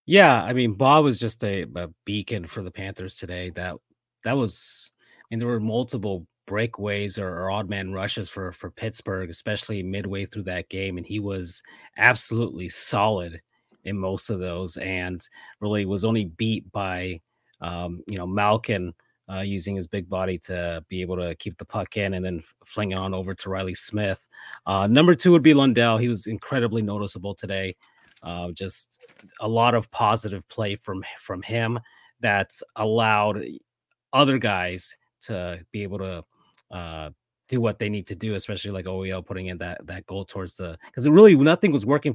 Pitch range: 95-120 Hz